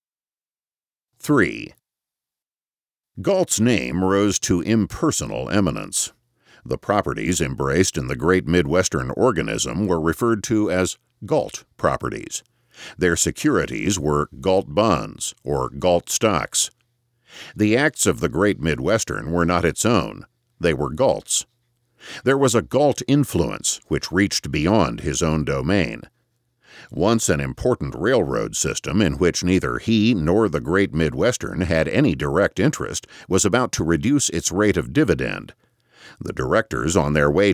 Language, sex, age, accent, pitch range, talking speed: English, male, 50-69, American, 85-120 Hz, 135 wpm